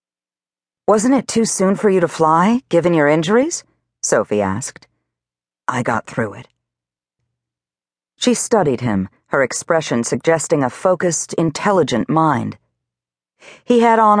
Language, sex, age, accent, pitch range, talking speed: English, female, 50-69, American, 115-185 Hz, 125 wpm